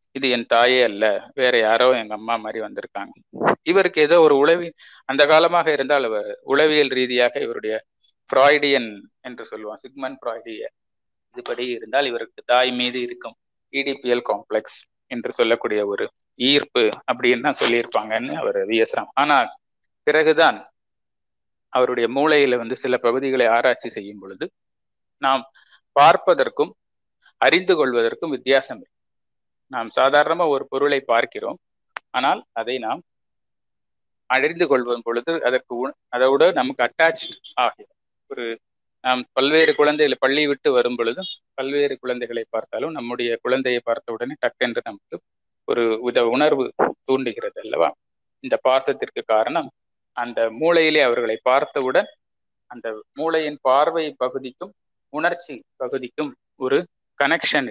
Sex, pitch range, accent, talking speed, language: male, 120-160 Hz, native, 115 wpm, Tamil